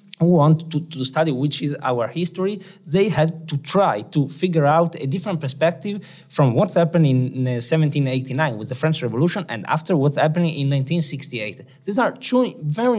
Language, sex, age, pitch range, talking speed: Hungarian, male, 20-39, 130-170 Hz, 175 wpm